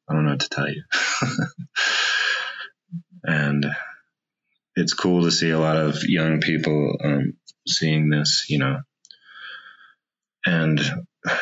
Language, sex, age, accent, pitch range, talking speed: English, male, 30-49, American, 75-90 Hz, 120 wpm